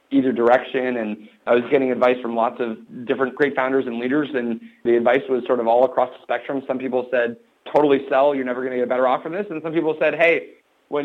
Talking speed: 245 wpm